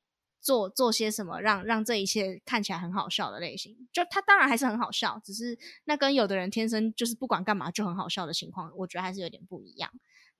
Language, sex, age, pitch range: Chinese, female, 20-39, 195-245 Hz